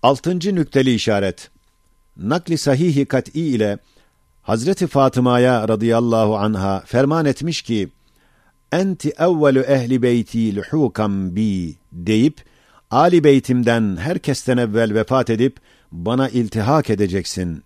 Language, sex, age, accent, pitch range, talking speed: Turkish, male, 50-69, native, 105-140 Hz, 105 wpm